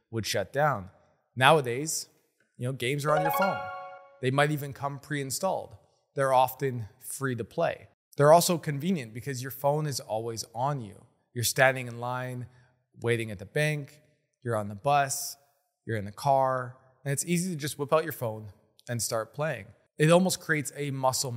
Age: 20-39